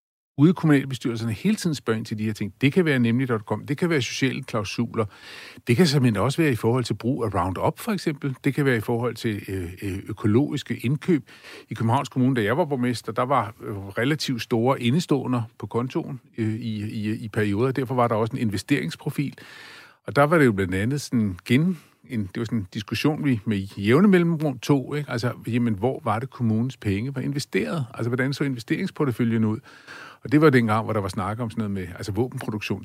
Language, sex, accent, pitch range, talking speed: Danish, male, native, 110-140 Hz, 210 wpm